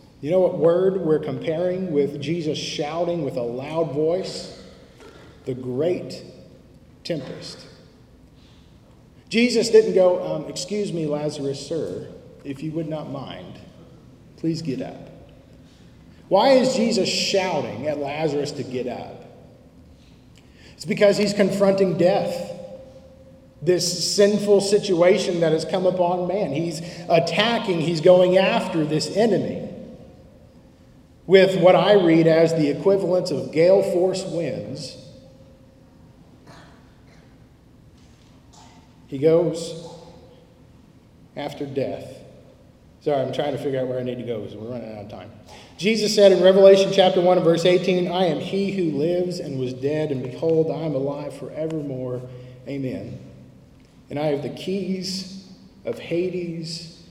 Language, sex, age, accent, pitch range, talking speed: English, male, 40-59, American, 140-185 Hz, 130 wpm